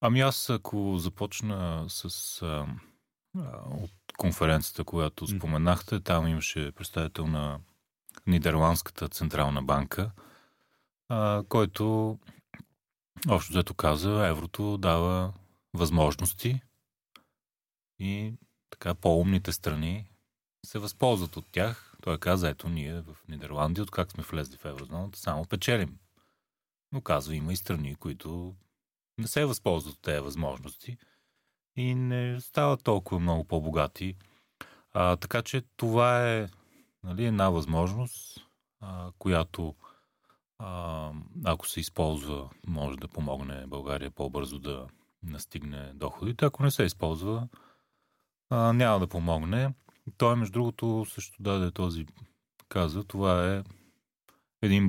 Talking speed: 115 wpm